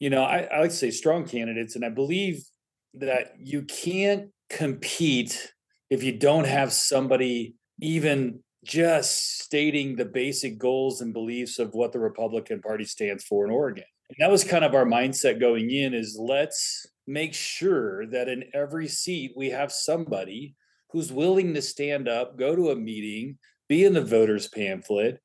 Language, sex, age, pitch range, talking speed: English, male, 30-49, 125-165 Hz, 170 wpm